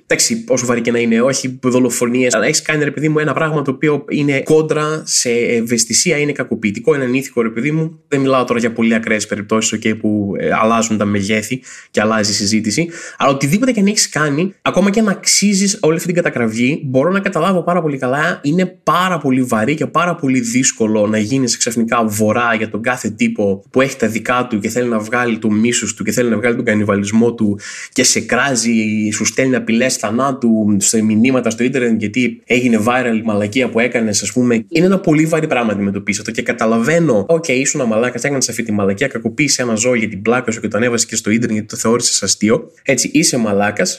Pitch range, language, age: 110-160 Hz, Greek, 20-39